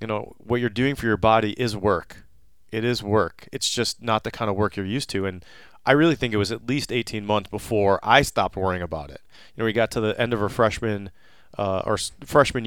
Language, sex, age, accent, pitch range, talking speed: English, male, 30-49, American, 100-120 Hz, 245 wpm